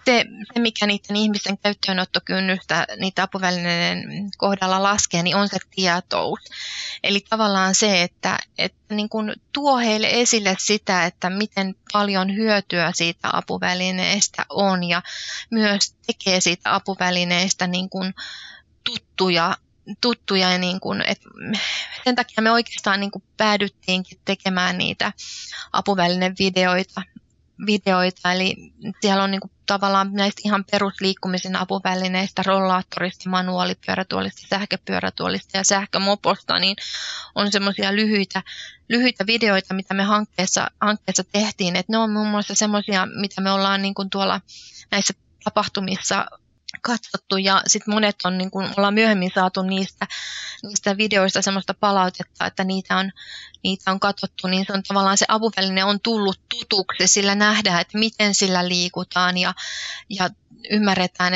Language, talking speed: Finnish, 125 wpm